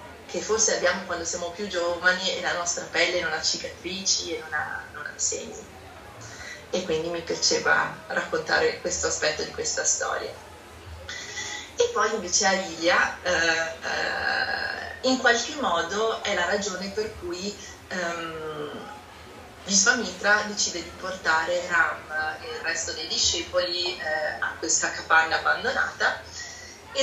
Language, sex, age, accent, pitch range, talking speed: Italian, female, 30-49, native, 170-245 Hz, 135 wpm